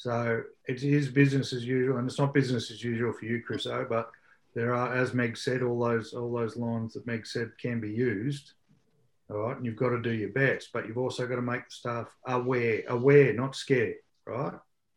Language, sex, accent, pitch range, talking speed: English, male, Australian, 115-140 Hz, 215 wpm